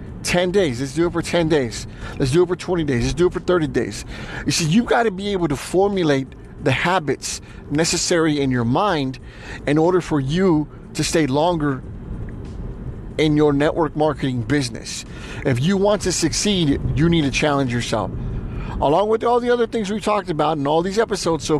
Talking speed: 195 wpm